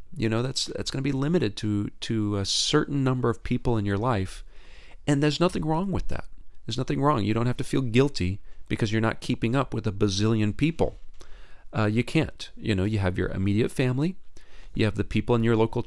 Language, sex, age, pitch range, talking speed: English, male, 40-59, 95-120 Hz, 225 wpm